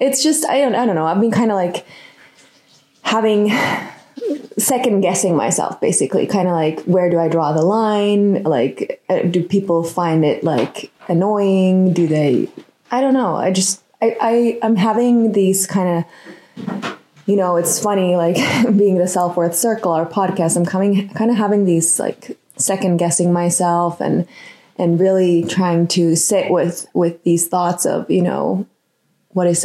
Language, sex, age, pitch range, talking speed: English, female, 20-39, 165-200 Hz, 170 wpm